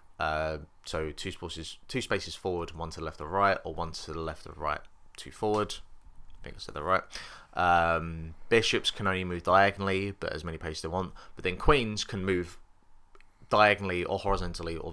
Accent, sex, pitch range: British, male, 85-100 Hz